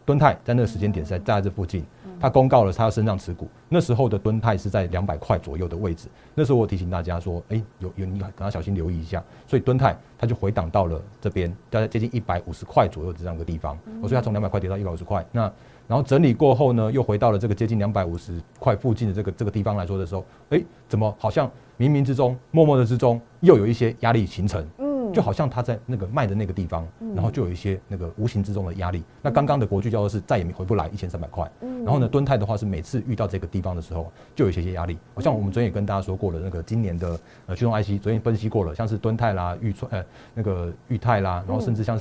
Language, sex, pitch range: Chinese, male, 95-120 Hz